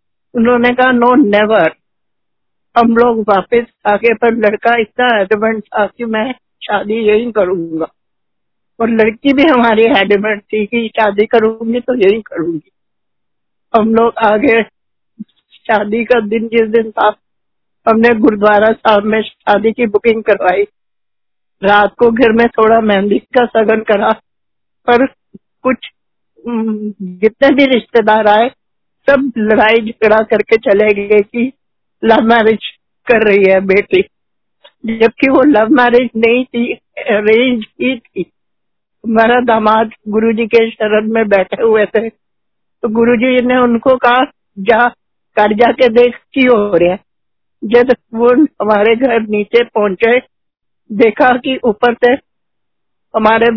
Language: Hindi